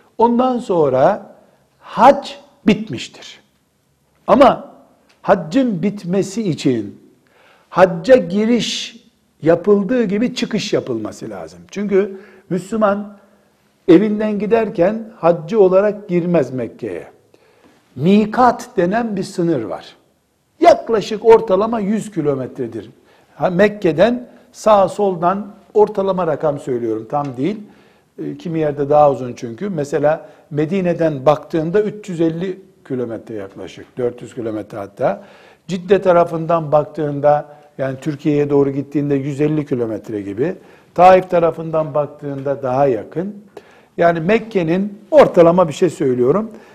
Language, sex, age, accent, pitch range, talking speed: Turkish, male, 60-79, native, 150-210 Hz, 95 wpm